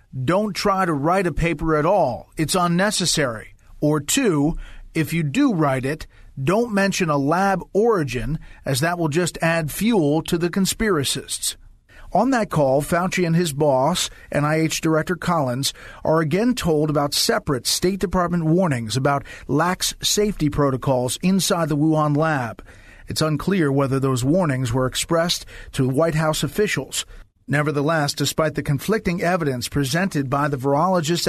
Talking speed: 150 wpm